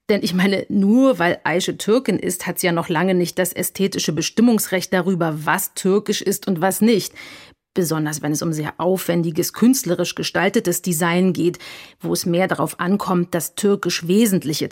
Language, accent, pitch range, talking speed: German, German, 180-230 Hz, 170 wpm